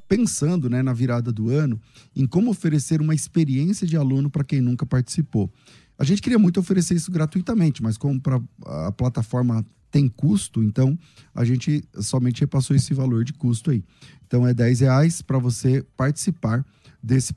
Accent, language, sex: Brazilian, Portuguese, male